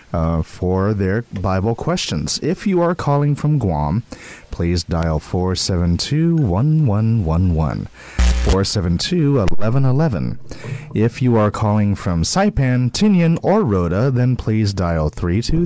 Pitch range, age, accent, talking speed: 85-130 Hz, 30-49, American, 150 wpm